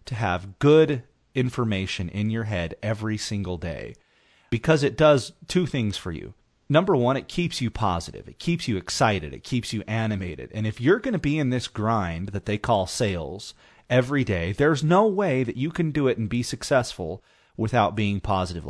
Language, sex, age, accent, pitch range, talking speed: English, male, 30-49, American, 95-130 Hz, 195 wpm